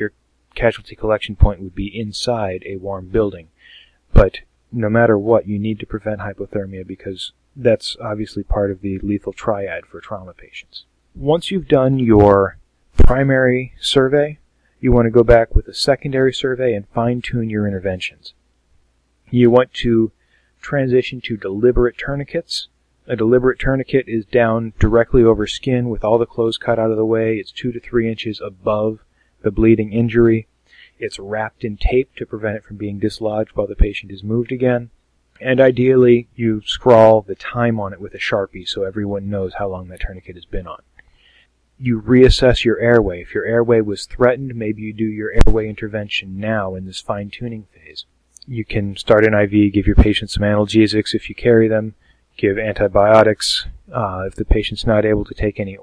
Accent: American